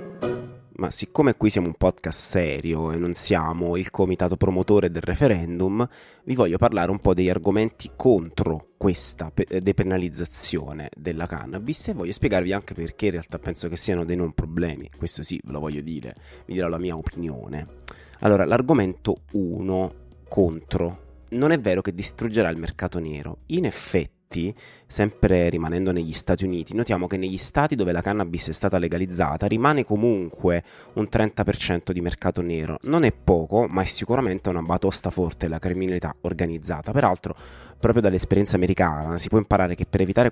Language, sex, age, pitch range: Italian, male, 30-49, 85-100 Hz